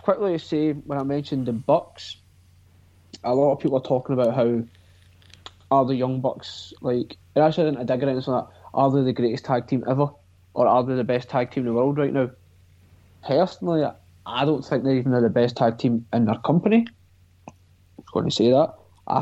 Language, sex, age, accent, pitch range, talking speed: English, male, 30-49, British, 90-135 Hz, 210 wpm